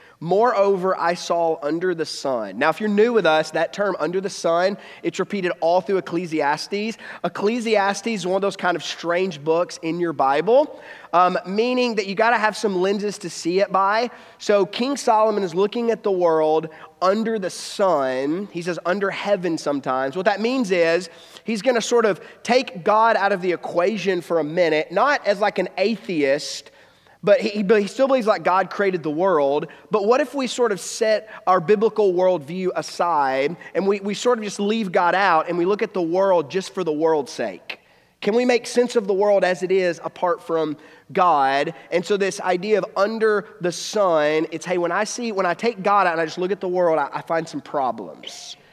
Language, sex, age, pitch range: English, male, 30-49, 170-210 Hz